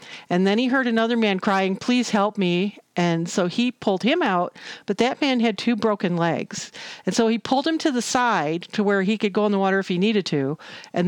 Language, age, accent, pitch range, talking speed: English, 50-69, American, 180-240 Hz, 240 wpm